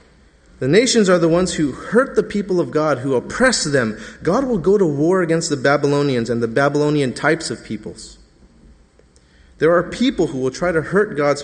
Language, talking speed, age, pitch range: English, 195 wpm, 30-49, 115-175 Hz